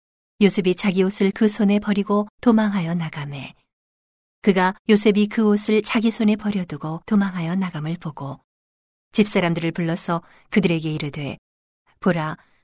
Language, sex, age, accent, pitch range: Korean, female, 40-59, native, 165-210 Hz